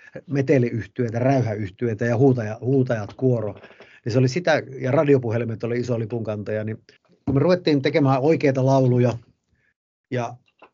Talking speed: 130 wpm